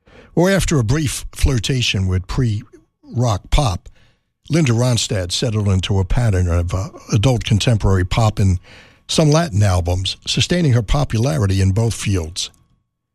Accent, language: American, English